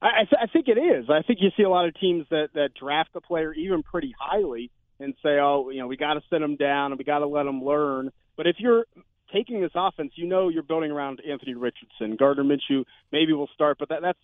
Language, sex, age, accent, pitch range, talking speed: English, male, 30-49, American, 140-175 Hz, 255 wpm